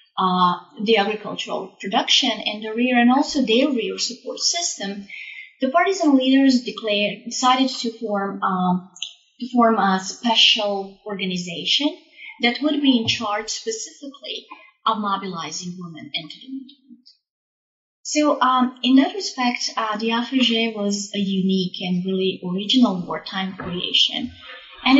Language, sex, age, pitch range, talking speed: English, female, 30-49, 205-270 Hz, 130 wpm